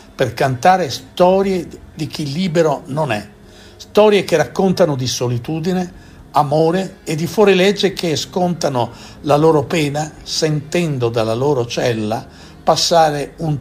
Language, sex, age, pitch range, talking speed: Italian, male, 60-79, 120-170 Hz, 125 wpm